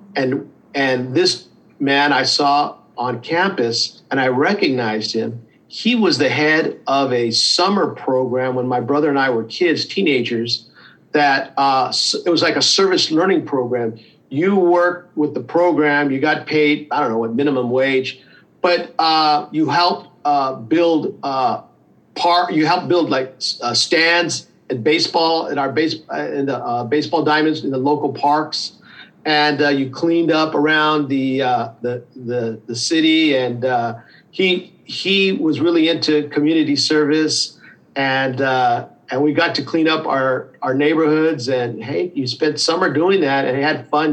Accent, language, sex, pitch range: American, English, male, 130-160 Hz